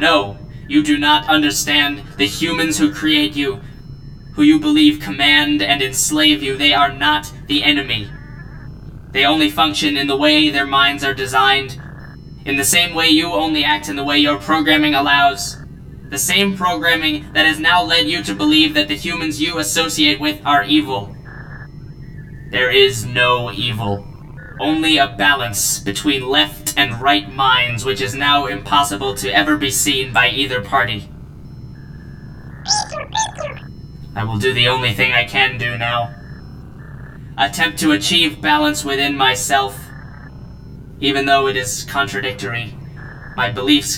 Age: 10-29